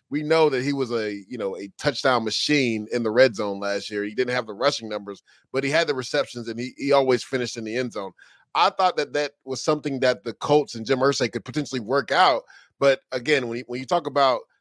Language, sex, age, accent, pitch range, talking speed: English, male, 30-49, American, 120-150 Hz, 250 wpm